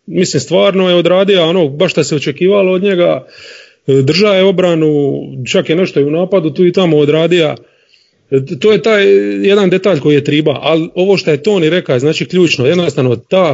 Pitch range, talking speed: 140-185 Hz, 185 wpm